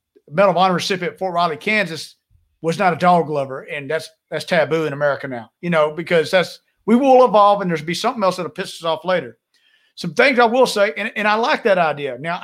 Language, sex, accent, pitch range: English, male, American, 170-220 Hz